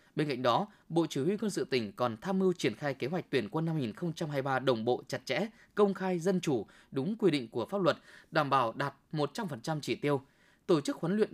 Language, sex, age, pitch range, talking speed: Vietnamese, male, 20-39, 130-190 Hz, 235 wpm